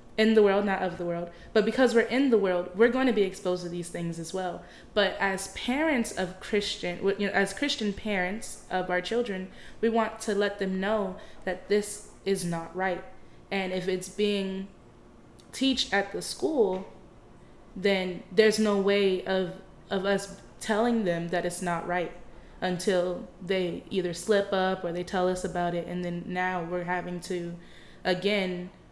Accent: American